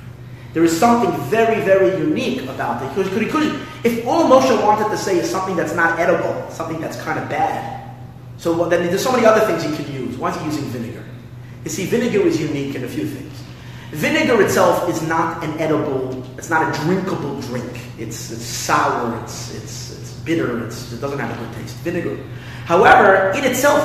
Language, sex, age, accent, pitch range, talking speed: English, male, 30-49, American, 125-170 Hz, 200 wpm